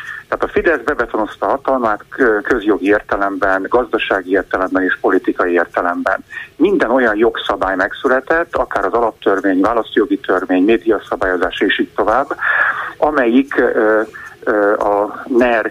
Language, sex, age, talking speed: Hungarian, male, 50-69, 105 wpm